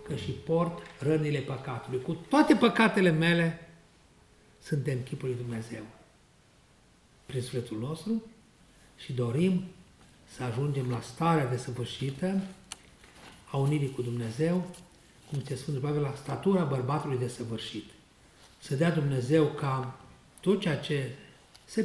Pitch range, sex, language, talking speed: 120-155 Hz, male, Hungarian, 125 wpm